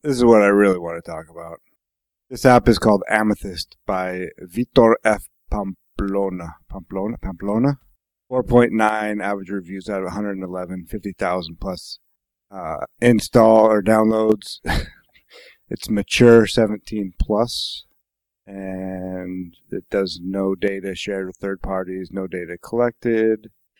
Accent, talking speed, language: American, 120 wpm, English